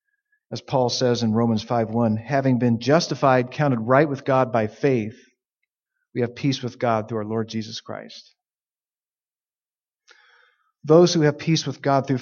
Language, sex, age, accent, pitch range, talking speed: English, male, 40-59, American, 120-155 Hz, 155 wpm